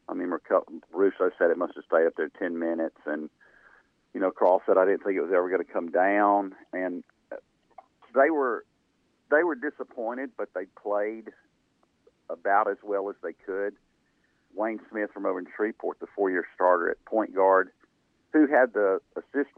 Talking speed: 180 wpm